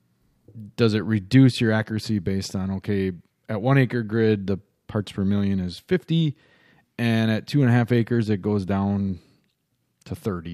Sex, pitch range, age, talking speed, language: male, 100-125 Hz, 30-49, 170 wpm, English